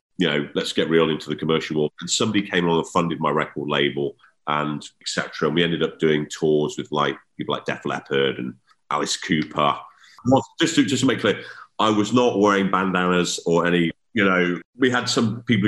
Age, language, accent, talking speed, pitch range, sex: 40-59, English, British, 210 wpm, 80-105 Hz, male